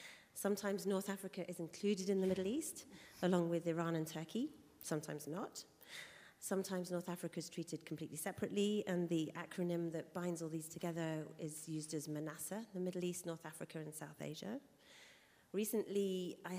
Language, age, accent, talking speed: English, 30-49, British, 165 wpm